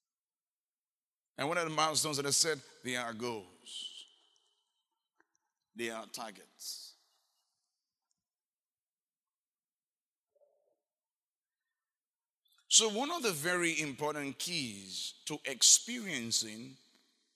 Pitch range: 125-200 Hz